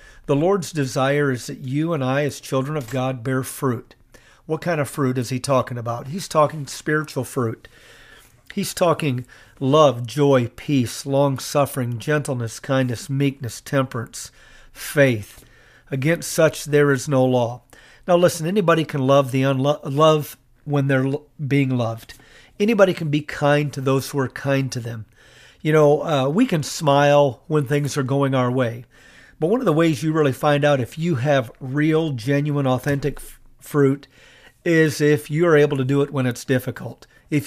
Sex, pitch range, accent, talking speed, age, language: male, 130-150 Hz, American, 170 wpm, 40-59, English